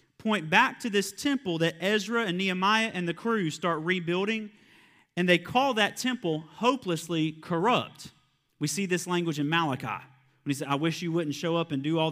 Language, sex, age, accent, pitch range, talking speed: English, male, 30-49, American, 145-205 Hz, 195 wpm